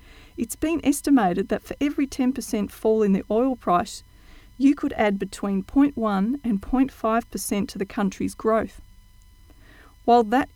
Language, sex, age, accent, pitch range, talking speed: English, female, 40-59, Australian, 195-250 Hz, 150 wpm